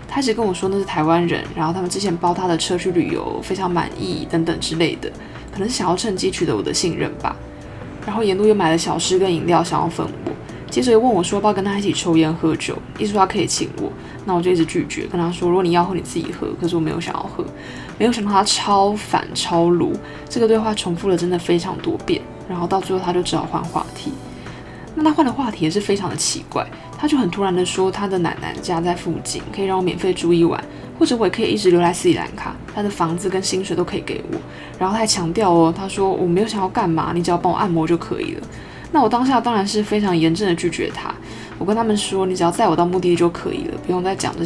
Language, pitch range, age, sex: Chinese, 170-200 Hz, 20-39, female